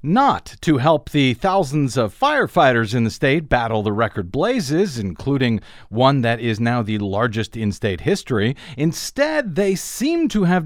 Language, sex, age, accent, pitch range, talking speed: English, male, 50-69, American, 120-175 Hz, 165 wpm